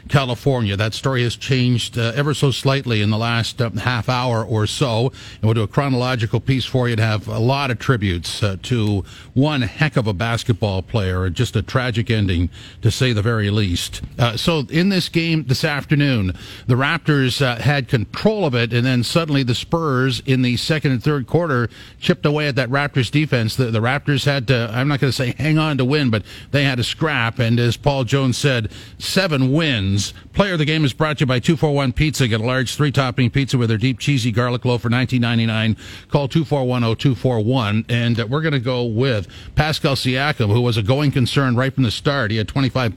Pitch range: 115-140 Hz